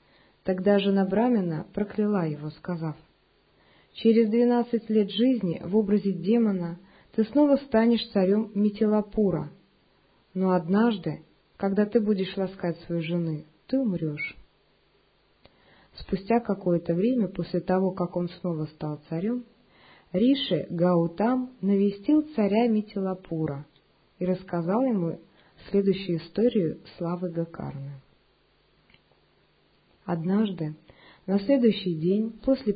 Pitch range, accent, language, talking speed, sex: 170-220 Hz, native, Russian, 105 wpm, female